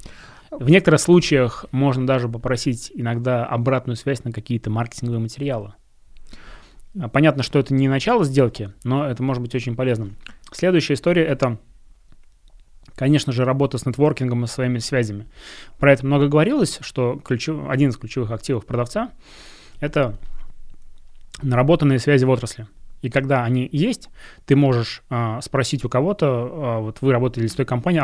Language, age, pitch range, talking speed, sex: Russian, 20-39, 120-140 Hz, 140 wpm, male